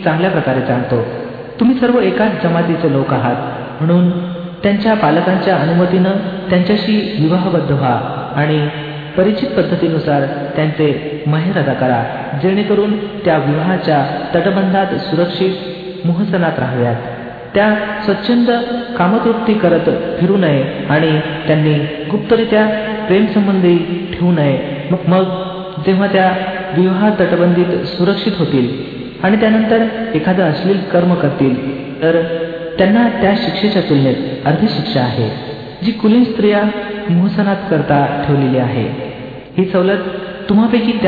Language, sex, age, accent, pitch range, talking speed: Marathi, male, 50-69, native, 150-200 Hz, 105 wpm